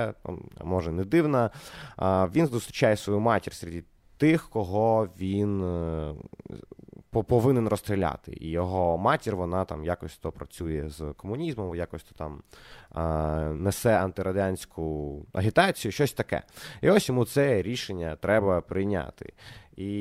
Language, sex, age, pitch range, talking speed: Ukrainian, male, 20-39, 85-120 Hz, 115 wpm